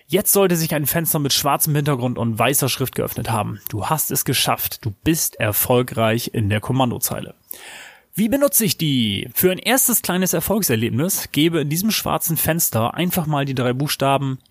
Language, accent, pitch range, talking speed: German, German, 115-155 Hz, 175 wpm